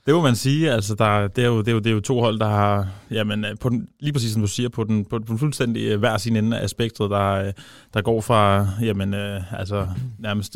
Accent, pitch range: native, 105-120 Hz